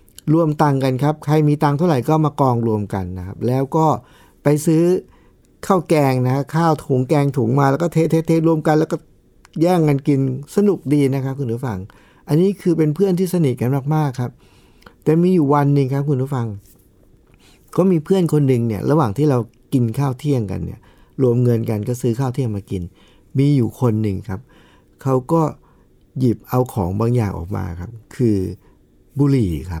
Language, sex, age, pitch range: Thai, male, 60-79, 110-155 Hz